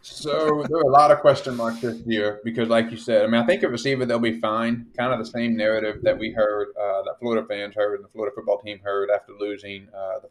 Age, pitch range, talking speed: 30-49, 100-115 Hz, 260 wpm